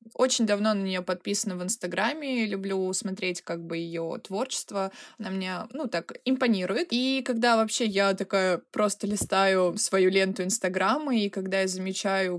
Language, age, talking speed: Russian, 20-39, 155 wpm